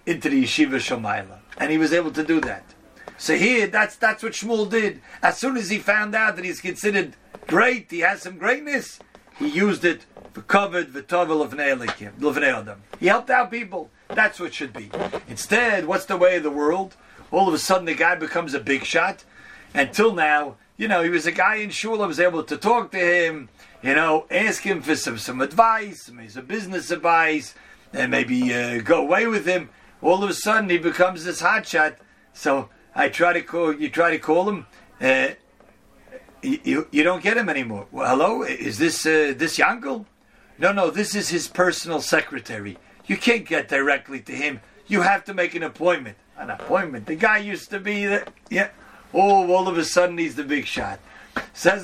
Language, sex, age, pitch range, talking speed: English, male, 40-59, 155-205 Hz, 200 wpm